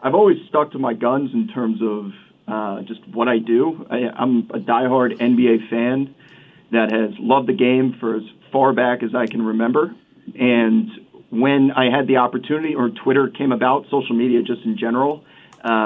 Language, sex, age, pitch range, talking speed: English, male, 40-59, 115-140 Hz, 180 wpm